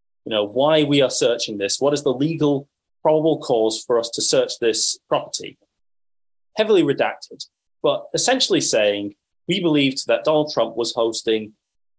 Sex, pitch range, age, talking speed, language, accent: male, 100-155 Hz, 30-49, 155 wpm, English, British